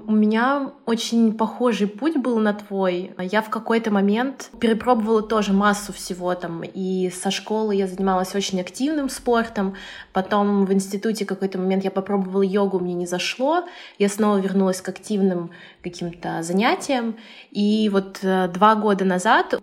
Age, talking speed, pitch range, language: 20-39, 145 wpm, 195-230 Hz, Russian